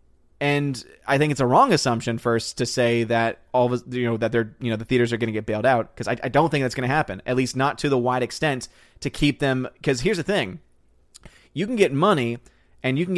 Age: 30-49